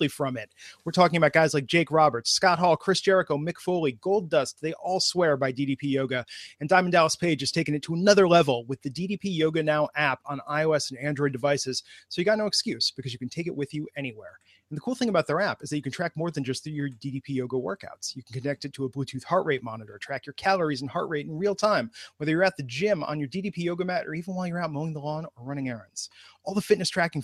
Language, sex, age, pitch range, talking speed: English, male, 30-49, 135-180 Hz, 265 wpm